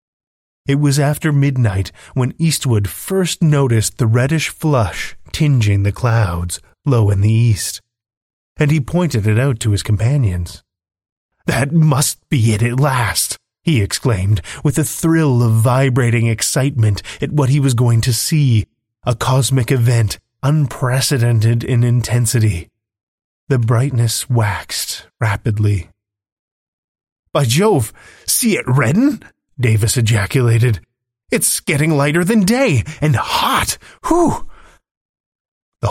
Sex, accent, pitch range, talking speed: male, American, 110-140 Hz, 120 wpm